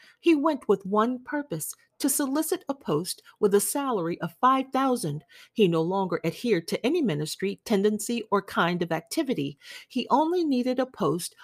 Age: 40-59